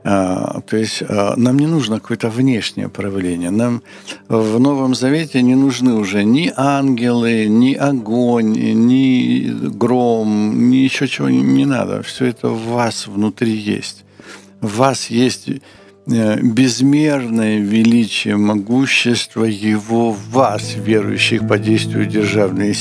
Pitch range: 105-125 Hz